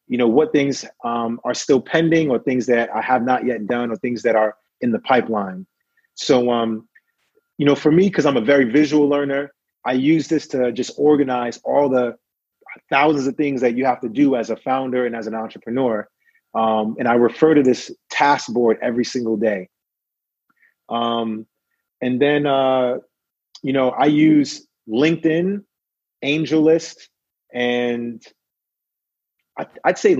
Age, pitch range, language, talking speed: 30-49, 120-145 Hz, English, 160 wpm